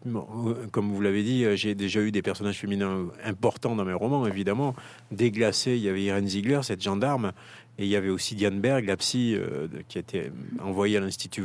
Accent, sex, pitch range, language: French, male, 100-120 Hz, French